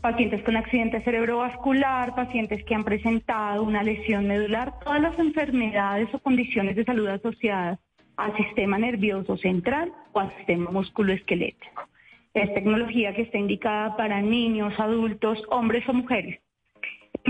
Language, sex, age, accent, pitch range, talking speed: Spanish, female, 30-49, Colombian, 210-255 Hz, 135 wpm